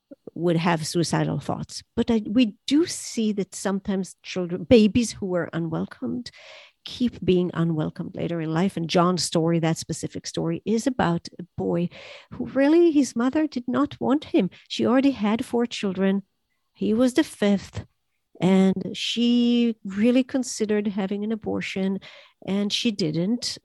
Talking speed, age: 145 wpm, 50-69